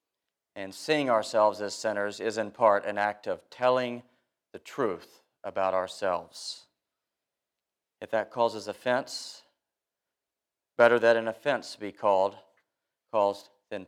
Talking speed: 120 wpm